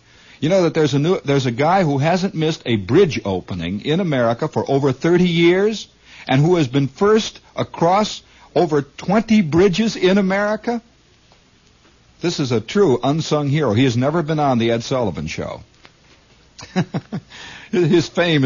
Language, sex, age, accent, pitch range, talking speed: English, male, 60-79, American, 100-150 Hz, 160 wpm